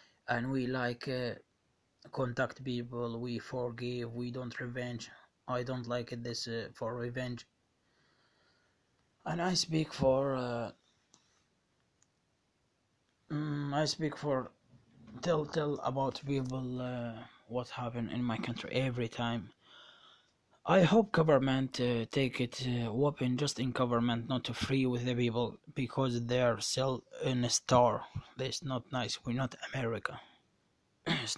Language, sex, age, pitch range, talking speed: Arabic, male, 20-39, 115-130 Hz, 135 wpm